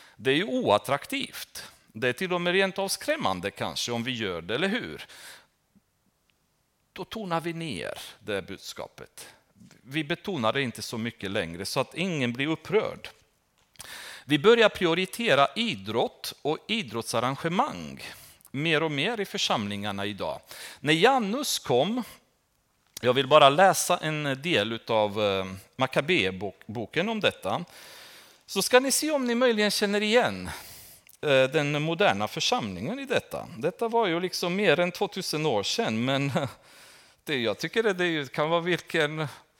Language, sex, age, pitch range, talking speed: Swedish, male, 40-59, 120-195 Hz, 140 wpm